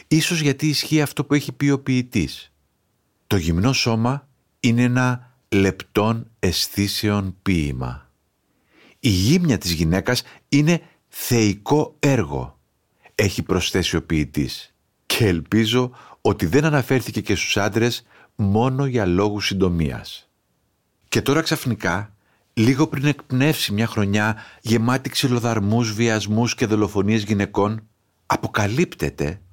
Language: Greek